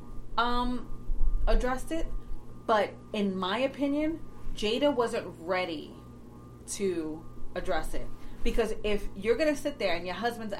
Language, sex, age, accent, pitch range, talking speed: English, female, 30-49, American, 180-260 Hz, 125 wpm